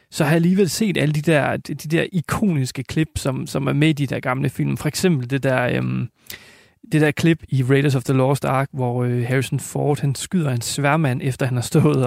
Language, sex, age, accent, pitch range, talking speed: Danish, male, 30-49, native, 135-160 Hz, 235 wpm